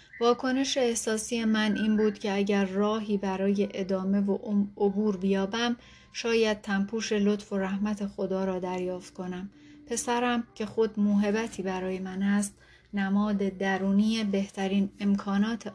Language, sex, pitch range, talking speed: Persian, female, 195-210 Hz, 125 wpm